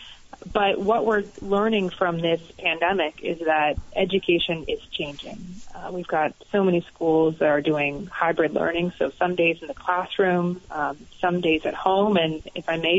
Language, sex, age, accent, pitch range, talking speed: English, female, 30-49, American, 155-190 Hz, 175 wpm